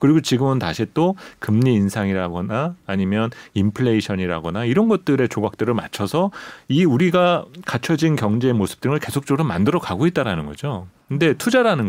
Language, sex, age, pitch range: Korean, male, 40-59, 110-175 Hz